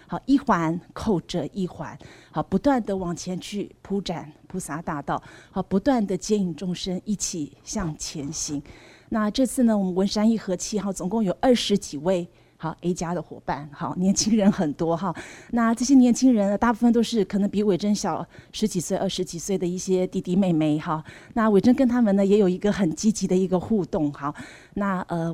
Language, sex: Chinese, female